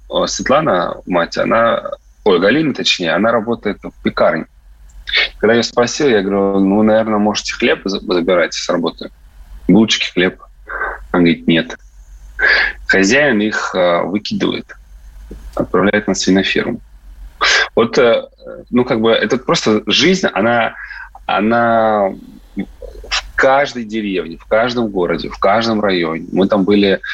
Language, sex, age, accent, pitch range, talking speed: Russian, male, 30-49, native, 85-115 Hz, 120 wpm